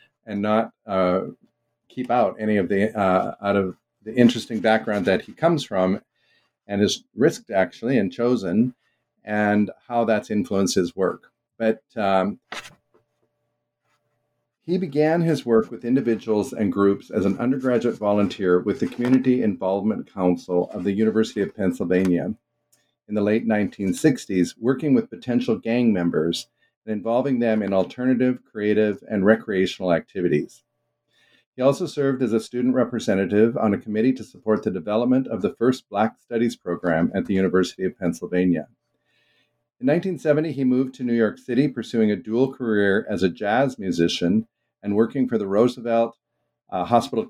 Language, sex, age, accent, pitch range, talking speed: English, male, 50-69, American, 100-125 Hz, 150 wpm